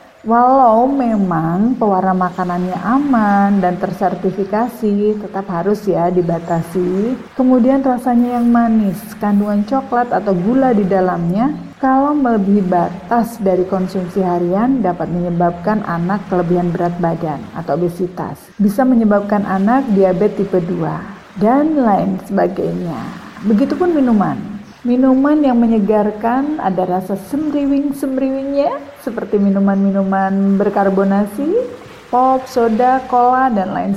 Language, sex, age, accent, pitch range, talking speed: Indonesian, female, 40-59, native, 185-235 Hz, 105 wpm